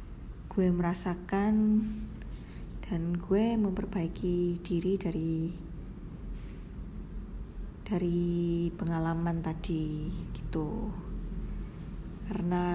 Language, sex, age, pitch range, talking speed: Indonesian, female, 20-39, 170-195 Hz, 55 wpm